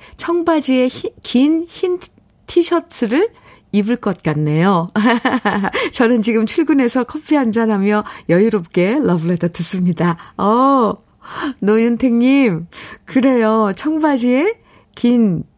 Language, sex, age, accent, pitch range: Korean, female, 50-69, native, 170-240 Hz